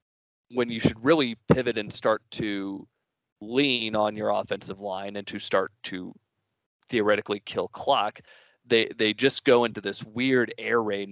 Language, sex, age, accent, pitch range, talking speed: English, male, 20-39, American, 100-115 Hz, 155 wpm